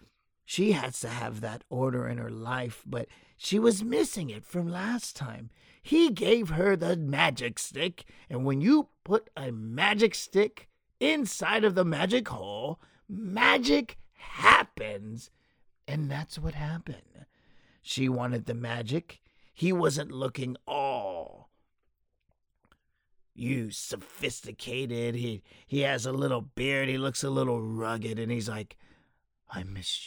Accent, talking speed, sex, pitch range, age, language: American, 135 wpm, male, 115-185 Hz, 50-69, English